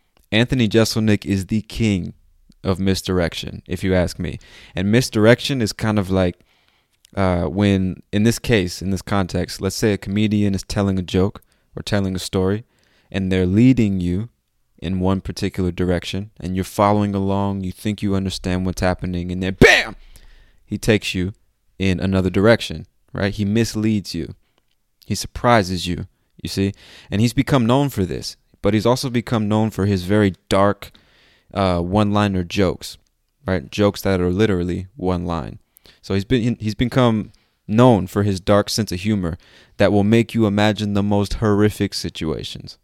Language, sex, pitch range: English, male, 90-105 Hz